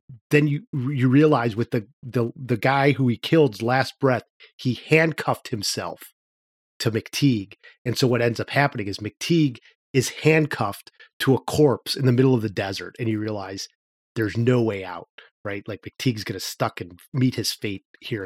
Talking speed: 180 wpm